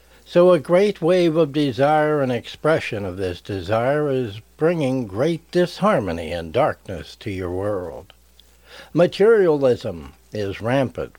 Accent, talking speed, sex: American, 125 wpm, male